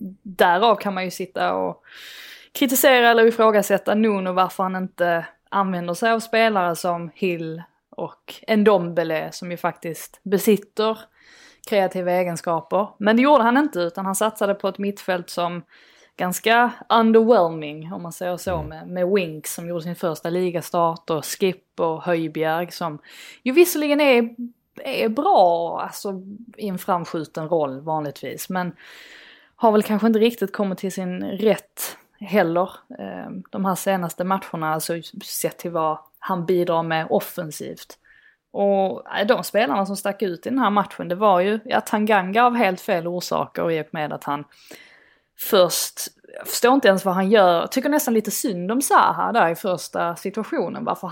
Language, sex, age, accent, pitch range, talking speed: Swedish, female, 20-39, native, 175-220 Hz, 160 wpm